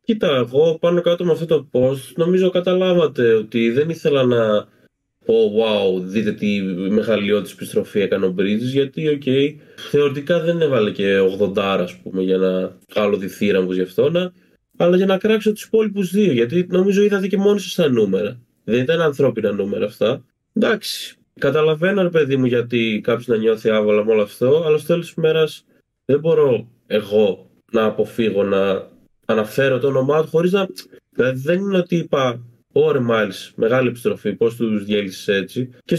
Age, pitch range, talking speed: 20-39, 115-185 Hz, 165 wpm